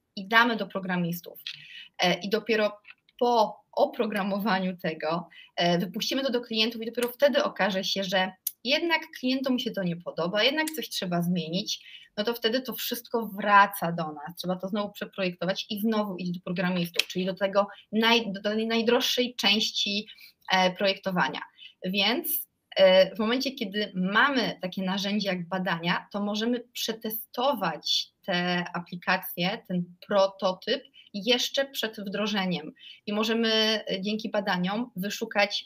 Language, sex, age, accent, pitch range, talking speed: Polish, female, 20-39, native, 185-230 Hz, 130 wpm